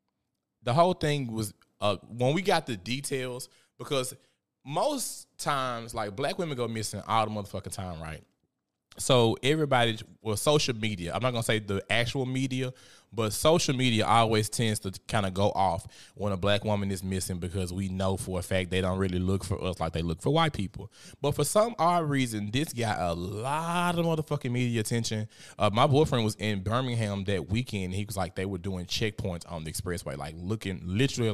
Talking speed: 200 wpm